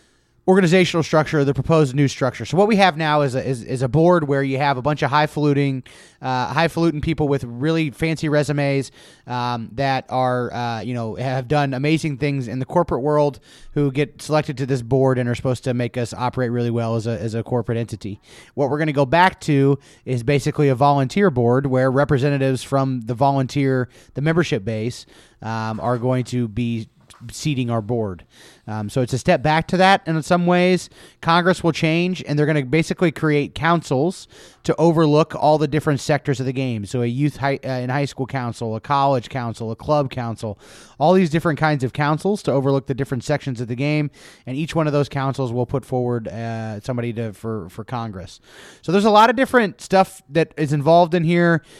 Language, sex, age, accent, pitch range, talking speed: English, male, 30-49, American, 125-155 Hz, 210 wpm